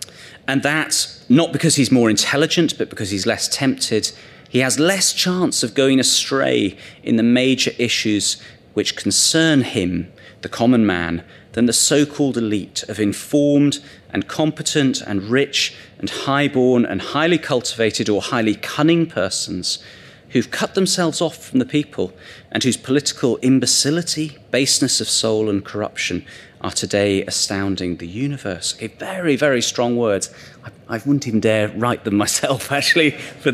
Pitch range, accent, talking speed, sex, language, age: 115-155 Hz, British, 150 wpm, male, English, 30-49